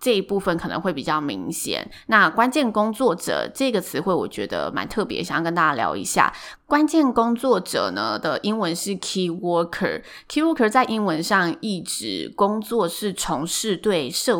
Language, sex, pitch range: Chinese, female, 170-230 Hz